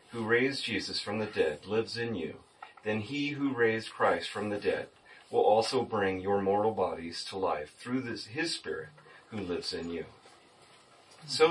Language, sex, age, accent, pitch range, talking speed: English, male, 40-59, American, 110-150 Hz, 175 wpm